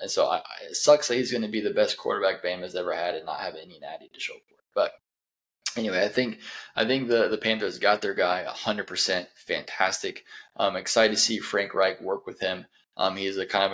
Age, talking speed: 20-39, 230 wpm